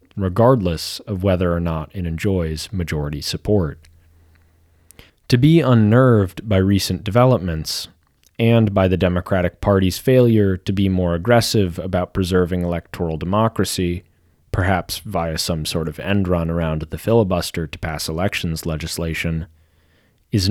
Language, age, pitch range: English, 30-49, 85-110 Hz